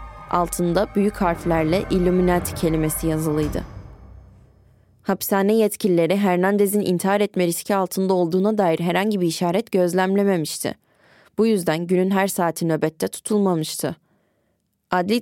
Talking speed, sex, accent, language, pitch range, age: 105 wpm, female, native, Turkish, 170-205 Hz, 20-39